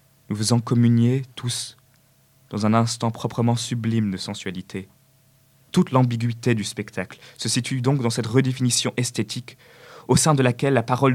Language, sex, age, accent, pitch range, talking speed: French, male, 20-39, French, 110-130 Hz, 150 wpm